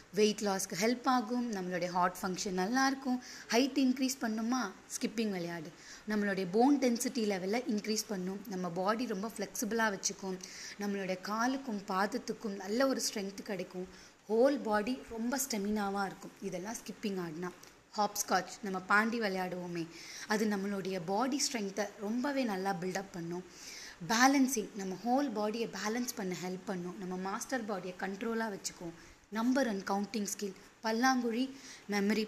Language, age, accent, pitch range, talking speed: Tamil, 20-39, native, 185-235 Hz, 130 wpm